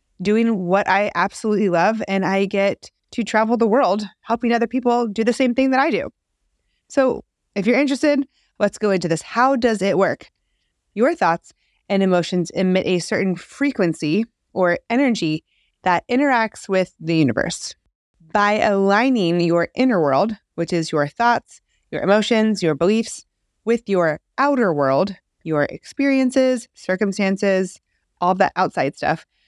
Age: 30-49